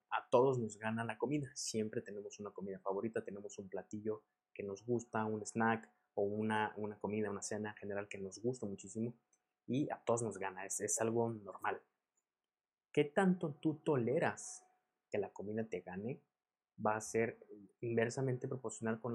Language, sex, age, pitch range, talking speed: Spanish, male, 20-39, 110-130 Hz, 165 wpm